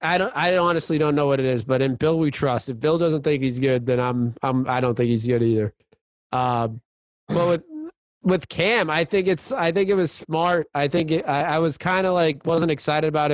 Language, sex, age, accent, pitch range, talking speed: English, male, 20-39, American, 130-165 Hz, 245 wpm